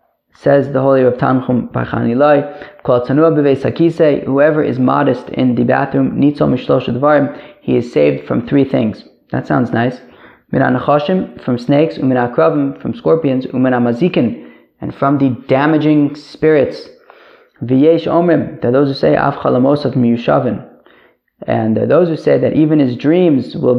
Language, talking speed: English, 130 wpm